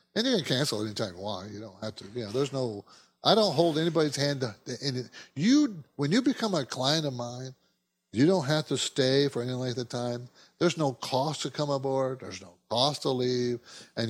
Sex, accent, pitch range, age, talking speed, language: male, American, 120-185 Hz, 60-79, 225 wpm, English